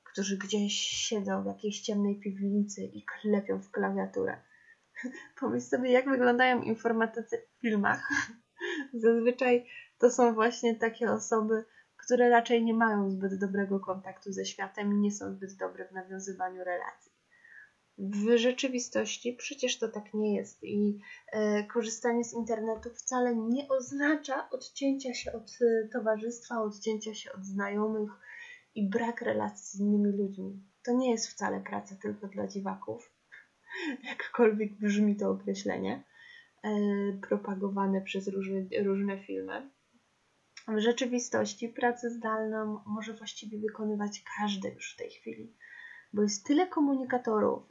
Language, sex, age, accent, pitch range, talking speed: Polish, female, 20-39, native, 200-245 Hz, 130 wpm